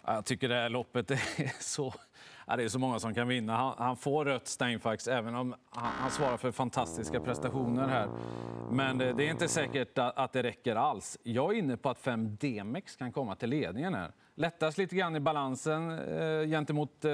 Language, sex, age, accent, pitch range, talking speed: Swedish, male, 30-49, native, 120-155 Hz, 190 wpm